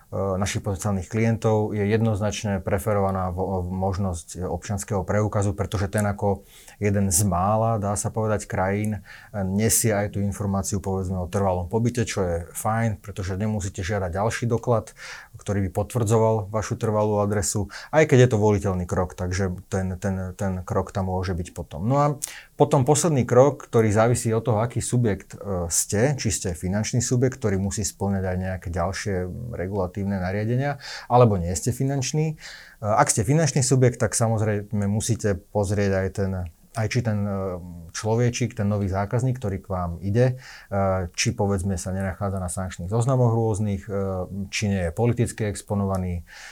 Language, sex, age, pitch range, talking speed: Slovak, male, 30-49, 95-115 Hz, 150 wpm